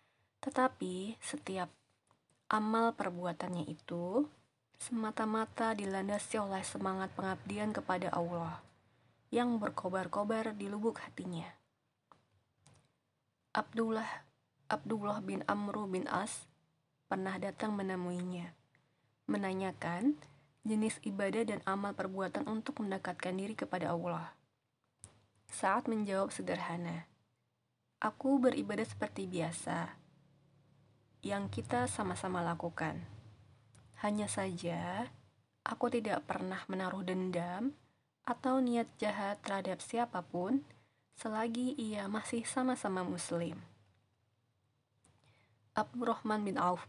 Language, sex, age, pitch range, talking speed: Indonesian, female, 20-39, 155-220 Hz, 90 wpm